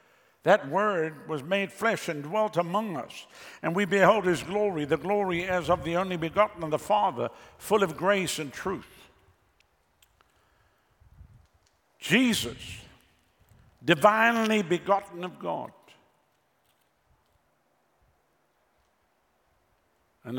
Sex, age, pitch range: male, 60-79, 120-180 Hz